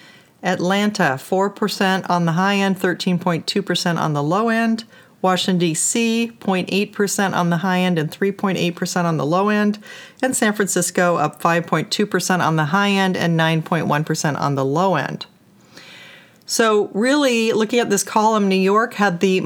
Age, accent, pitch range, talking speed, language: 40-59, American, 170-205 Hz, 150 wpm, English